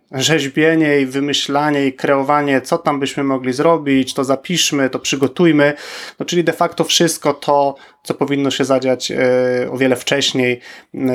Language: Polish